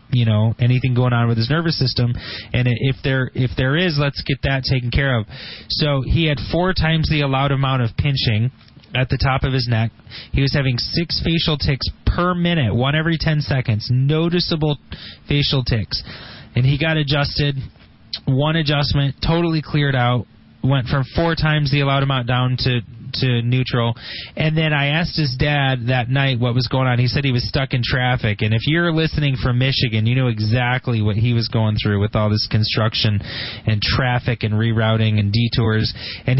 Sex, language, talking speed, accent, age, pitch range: male, English, 190 wpm, American, 30-49, 120-145 Hz